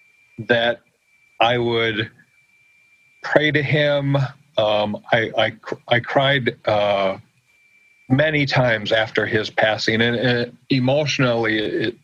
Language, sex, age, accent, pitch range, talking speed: English, male, 50-69, American, 115-140 Hz, 110 wpm